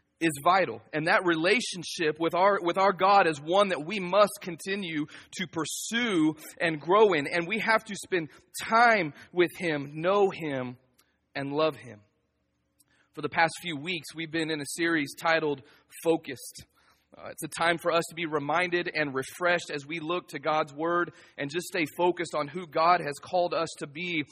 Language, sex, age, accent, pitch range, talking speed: English, male, 30-49, American, 145-175 Hz, 185 wpm